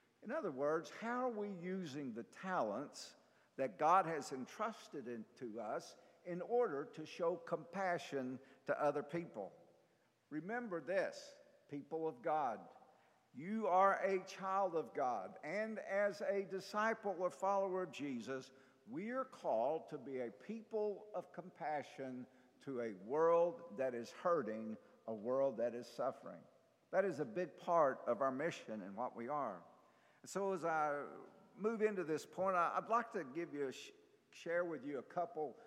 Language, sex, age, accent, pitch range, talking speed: English, male, 50-69, American, 135-190 Hz, 155 wpm